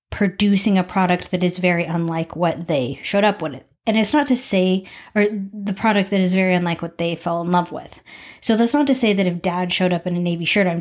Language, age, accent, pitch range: English, 30-49, American, 175-205 Hz